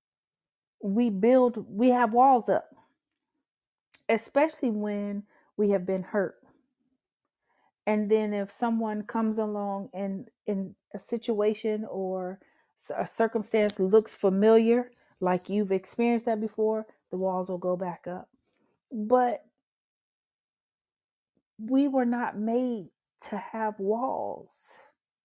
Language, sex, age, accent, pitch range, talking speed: English, female, 40-59, American, 190-235 Hz, 110 wpm